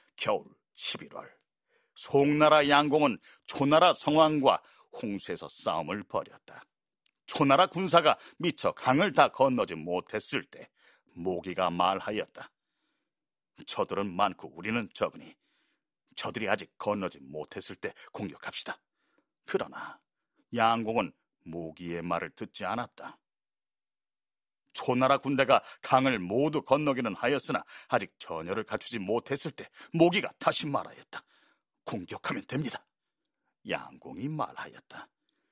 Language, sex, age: Korean, male, 40-59